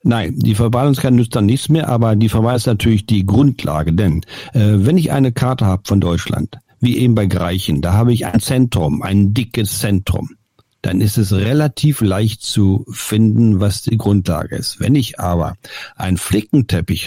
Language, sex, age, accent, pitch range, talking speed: German, male, 50-69, German, 105-140 Hz, 180 wpm